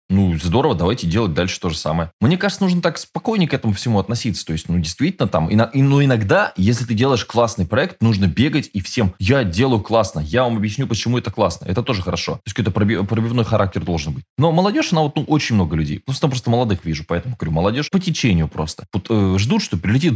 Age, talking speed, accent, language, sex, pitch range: 20-39, 230 wpm, native, Russian, male, 90-125 Hz